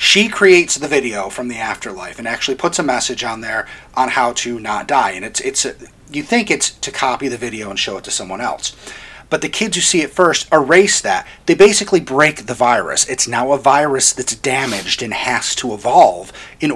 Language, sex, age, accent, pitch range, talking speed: English, male, 30-49, American, 130-180 Hz, 220 wpm